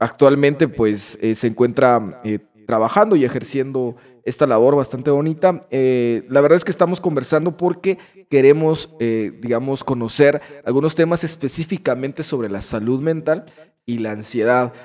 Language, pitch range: Spanish, 115-155 Hz